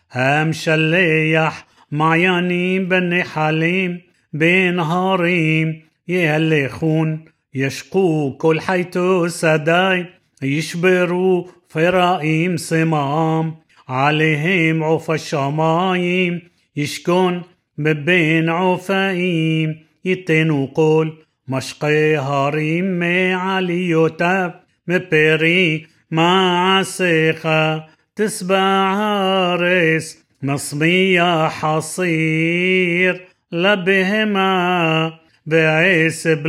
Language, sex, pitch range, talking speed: Hebrew, male, 155-185 Hz, 55 wpm